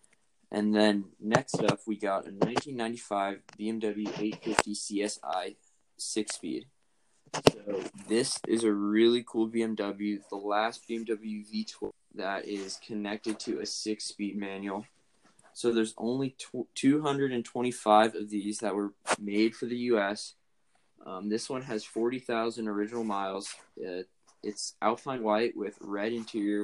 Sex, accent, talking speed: male, American, 125 wpm